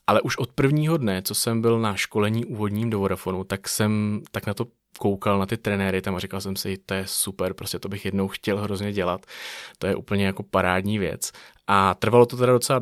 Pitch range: 95-110 Hz